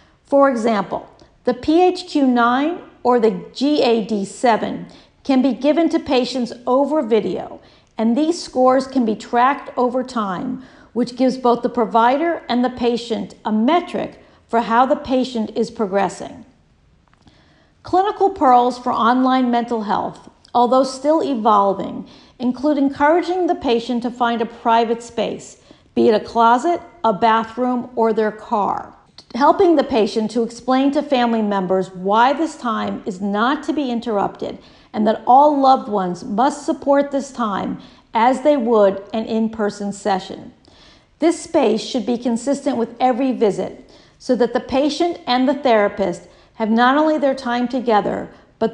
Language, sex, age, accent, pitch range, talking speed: English, female, 50-69, American, 225-275 Hz, 145 wpm